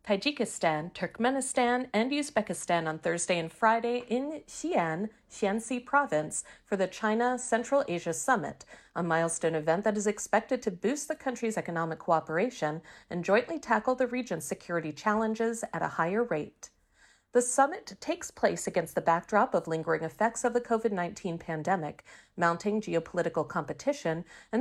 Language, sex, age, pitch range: Chinese, female, 40-59, 165-230 Hz